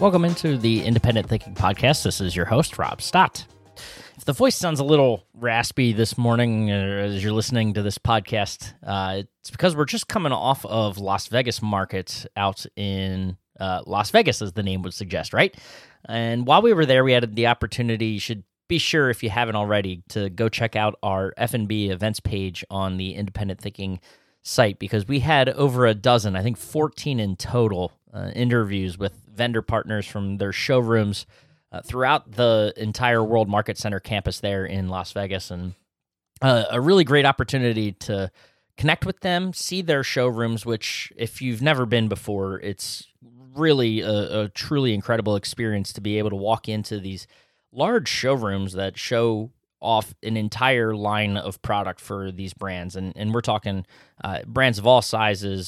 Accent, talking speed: American, 180 wpm